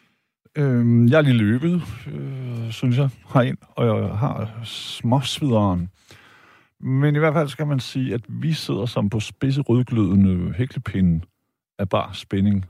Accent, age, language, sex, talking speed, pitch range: native, 60-79, Danish, male, 130 wpm, 105-135 Hz